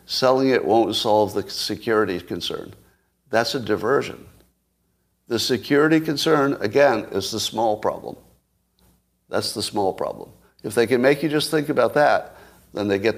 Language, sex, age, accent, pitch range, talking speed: English, male, 60-79, American, 100-125 Hz, 155 wpm